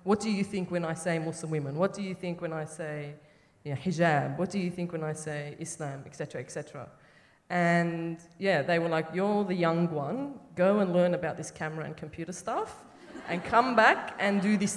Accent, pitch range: Australian, 165-195 Hz